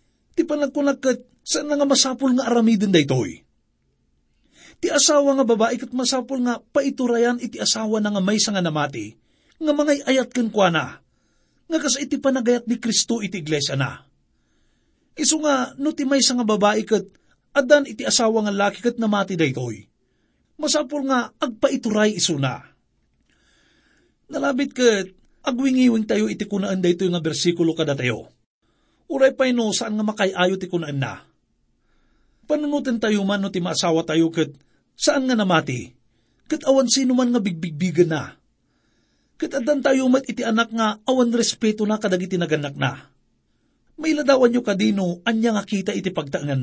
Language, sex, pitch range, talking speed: English, male, 190-265 Hz, 145 wpm